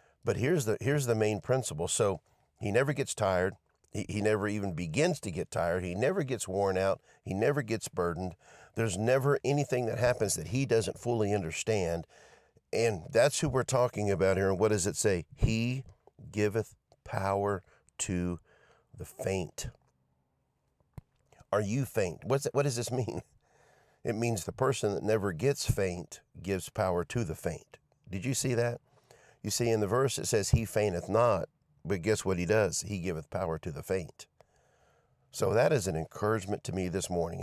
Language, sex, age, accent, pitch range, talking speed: English, male, 50-69, American, 90-120 Hz, 180 wpm